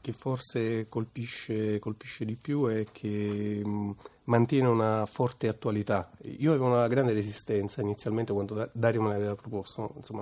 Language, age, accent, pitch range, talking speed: Italian, 30-49, native, 105-125 Hz, 155 wpm